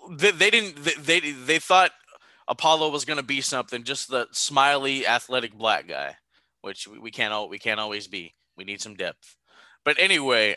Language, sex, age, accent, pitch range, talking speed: English, male, 20-39, American, 120-160 Hz, 180 wpm